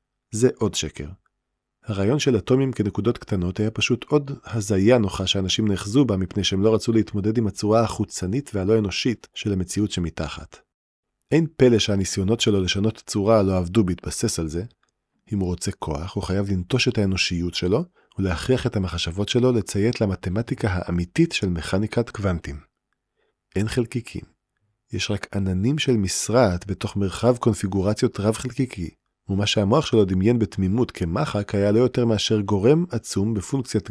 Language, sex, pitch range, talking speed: Hebrew, male, 95-120 Hz, 150 wpm